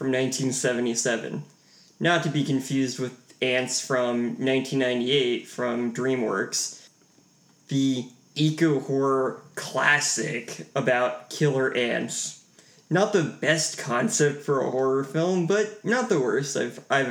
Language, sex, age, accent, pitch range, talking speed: English, male, 20-39, American, 125-150 Hz, 110 wpm